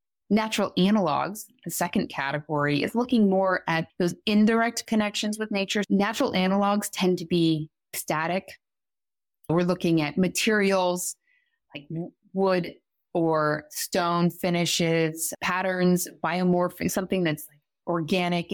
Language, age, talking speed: English, 20-39, 110 wpm